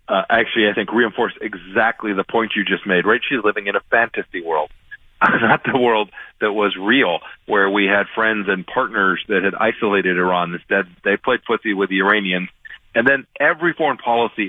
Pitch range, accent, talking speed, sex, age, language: 100-140 Hz, American, 190 wpm, male, 40-59, English